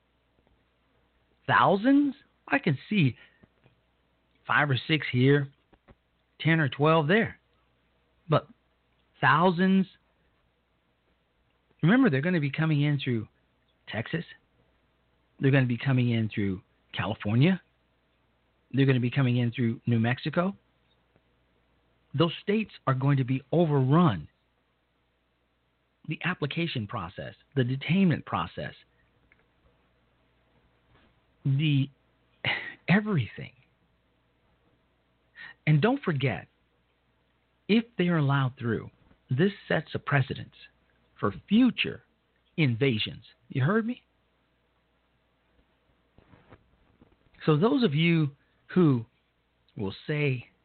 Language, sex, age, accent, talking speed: English, male, 40-59, American, 95 wpm